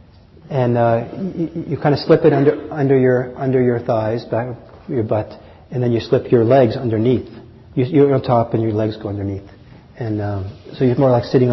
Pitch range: 105-135 Hz